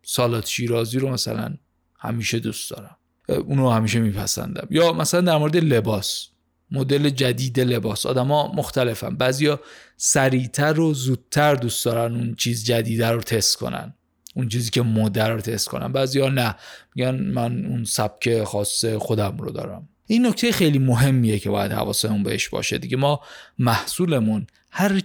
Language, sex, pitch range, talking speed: Persian, male, 110-150 Hz, 155 wpm